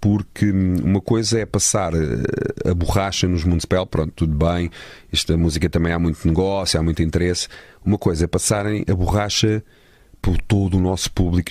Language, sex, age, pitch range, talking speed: English, male, 40-59, 85-100 Hz, 165 wpm